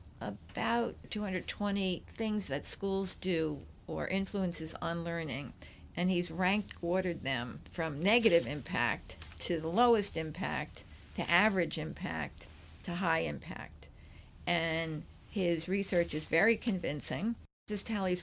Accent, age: American, 50-69